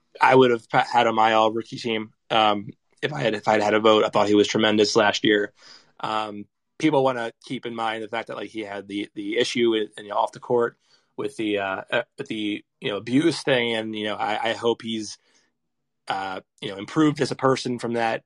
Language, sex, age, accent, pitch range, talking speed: English, male, 20-39, American, 105-120 Hz, 230 wpm